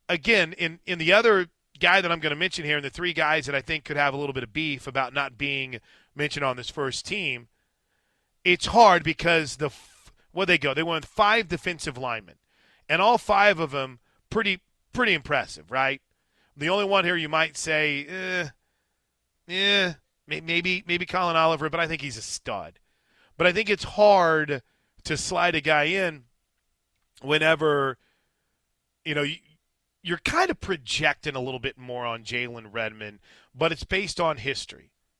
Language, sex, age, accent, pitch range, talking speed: English, male, 30-49, American, 145-185 Hz, 180 wpm